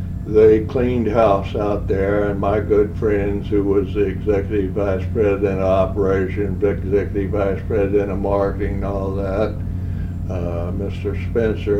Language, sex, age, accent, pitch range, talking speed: English, male, 60-79, American, 95-105 Hz, 140 wpm